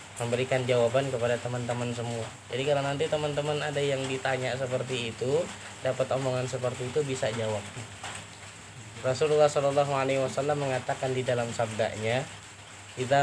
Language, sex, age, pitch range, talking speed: Malay, male, 20-39, 110-145 Hz, 120 wpm